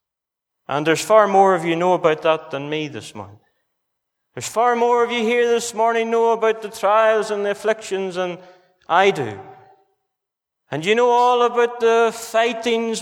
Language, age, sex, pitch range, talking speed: English, 30-49, male, 210-255 Hz, 175 wpm